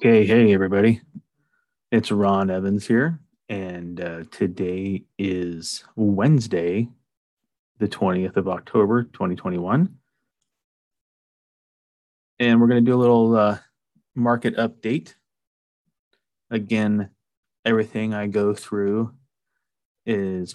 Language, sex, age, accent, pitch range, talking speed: English, male, 30-49, American, 95-110 Hz, 95 wpm